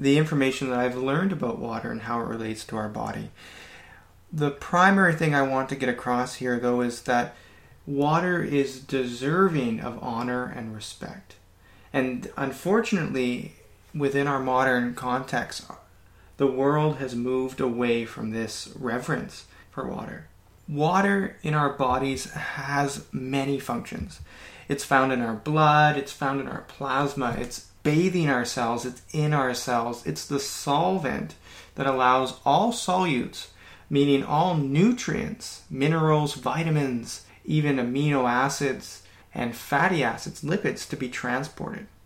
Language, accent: English, American